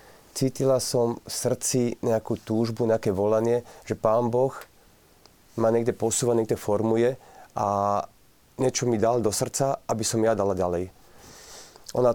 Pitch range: 105-125 Hz